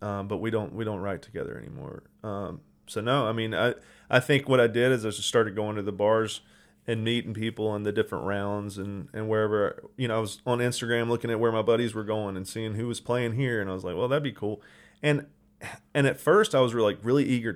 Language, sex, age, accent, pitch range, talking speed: English, male, 30-49, American, 100-115 Hz, 255 wpm